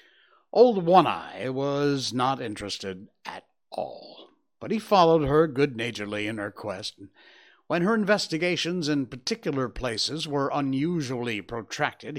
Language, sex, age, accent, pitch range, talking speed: English, male, 60-79, American, 120-175 Hz, 120 wpm